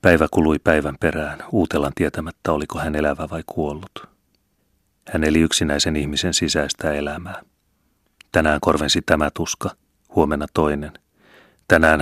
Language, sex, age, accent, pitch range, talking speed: Finnish, male, 30-49, native, 75-85 Hz, 120 wpm